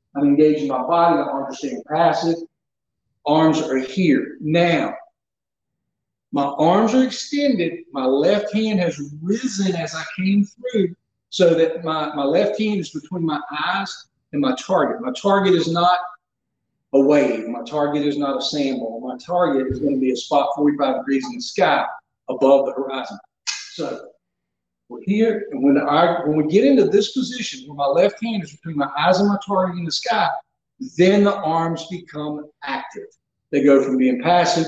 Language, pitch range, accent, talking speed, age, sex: English, 140-200 Hz, American, 175 wpm, 50-69, male